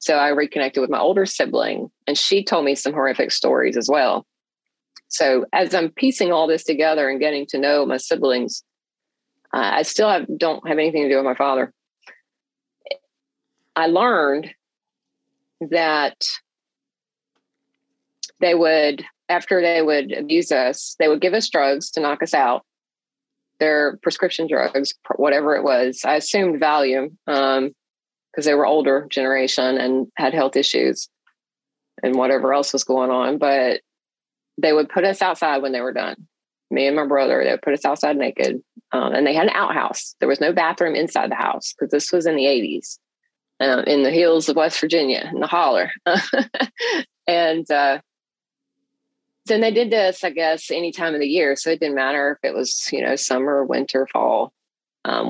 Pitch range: 135-175 Hz